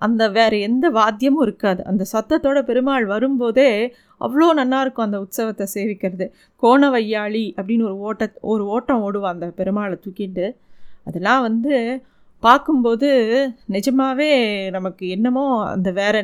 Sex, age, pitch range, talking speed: female, 20-39, 205-260 Hz, 120 wpm